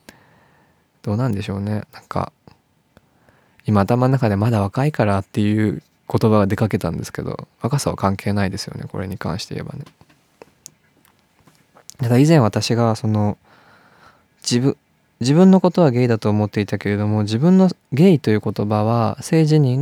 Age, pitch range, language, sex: 20-39, 100-140 Hz, Japanese, male